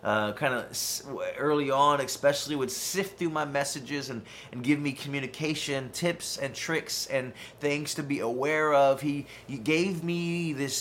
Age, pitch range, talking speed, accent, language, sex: 30-49, 115-145 Hz, 165 wpm, American, English, male